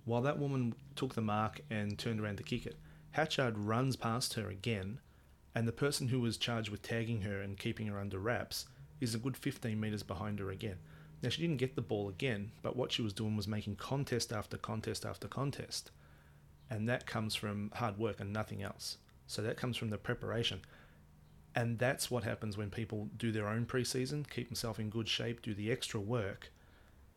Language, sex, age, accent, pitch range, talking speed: English, male, 30-49, Australian, 100-120 Hz, 205 wpm